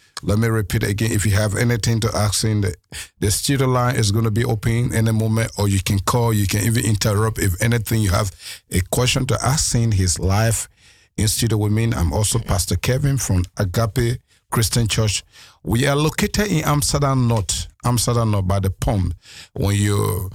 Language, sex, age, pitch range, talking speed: Dutch, male, 50-69, 100-115 Hz, 200 wpm